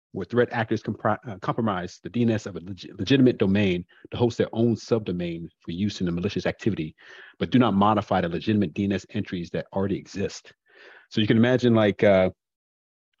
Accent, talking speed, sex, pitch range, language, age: American, 175 wpm, male, 95-115 Hz, English, 40-59